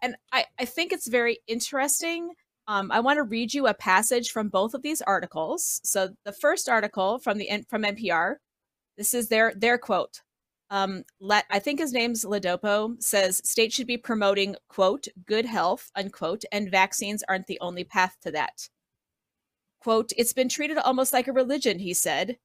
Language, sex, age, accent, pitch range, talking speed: English, female, 30-49, American, 200-265 Hz, 180 wpm